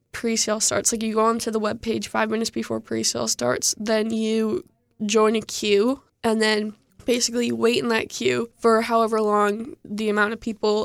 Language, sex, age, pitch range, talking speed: English, female, 10-29, 205-235 Hz, 185 wpm